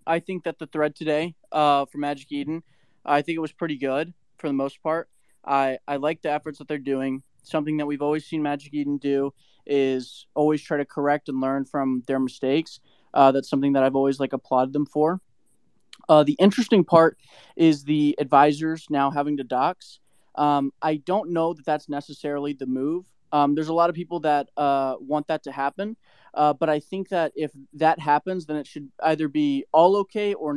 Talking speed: 205 wpm